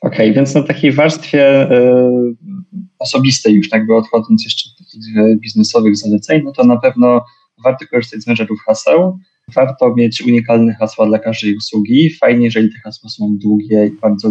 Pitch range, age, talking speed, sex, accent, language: 115-145 Hz, 20-39, 170 wpm, male, native, Polish